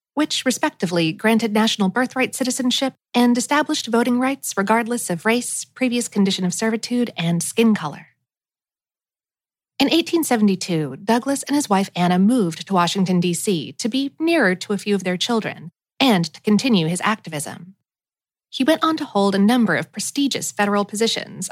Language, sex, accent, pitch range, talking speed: English, female, American, 185-250 Hz, 155 wpm